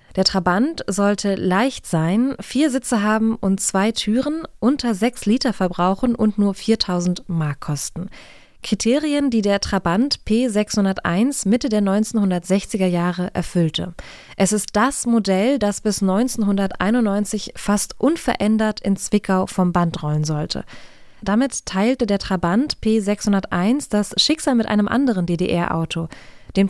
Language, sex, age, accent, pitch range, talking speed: German, female, 20-39, German, 185-225 Hz, 130 wpm